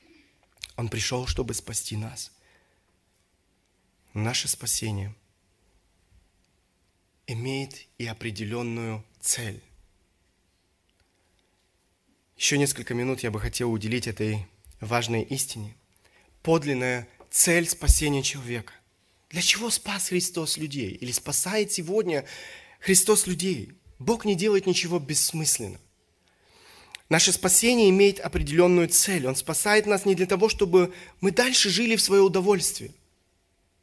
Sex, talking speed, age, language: male, 105 wpm, 20-39, Russian